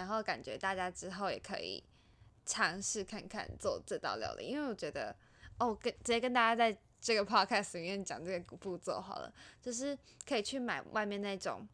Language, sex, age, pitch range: Chinese, female, 10-29, 185-240 Hz